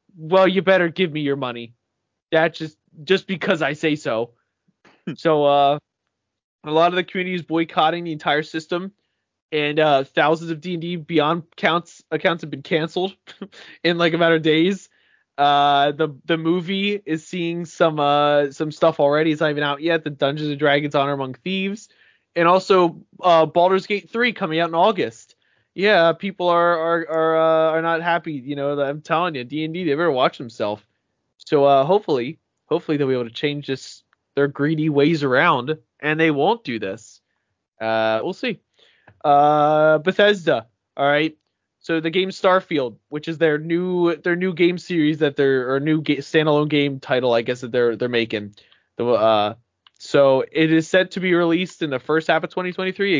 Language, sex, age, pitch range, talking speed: English, male, 20-39, 145-175 Hz, 185 wpm